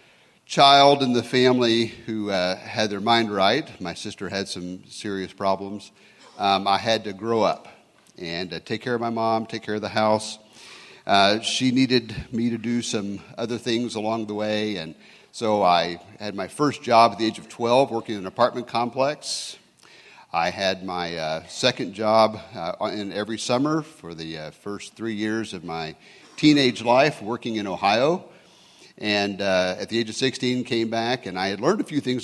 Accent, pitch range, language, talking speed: American, 100-125 Hz, English, 190 wpm